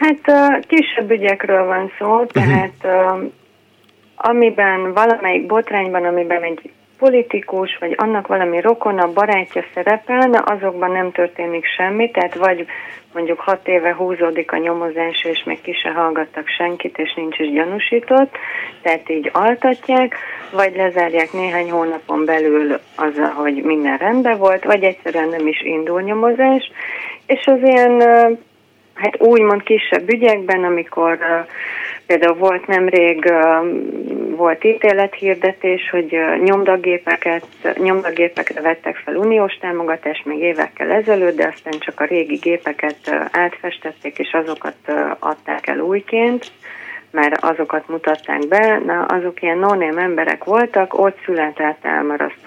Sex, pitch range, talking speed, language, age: female, 165-215 Hz, 120 wpm, Hungarian, 30-49